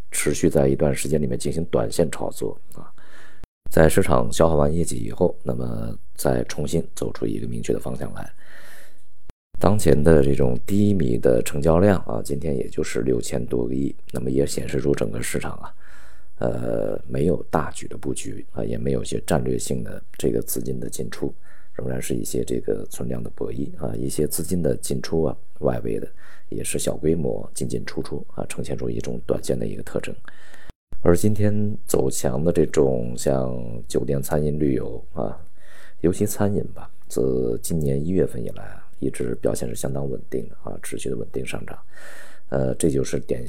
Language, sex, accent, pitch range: Chinese, male, native, 65-80 Hz